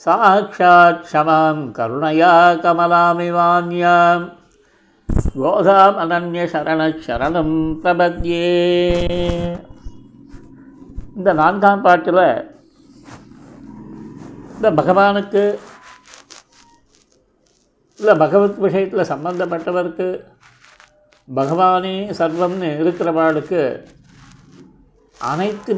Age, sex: 50-69, male